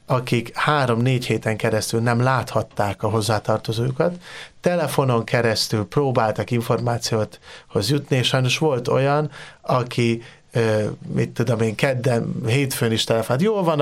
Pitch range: 115-140 Hz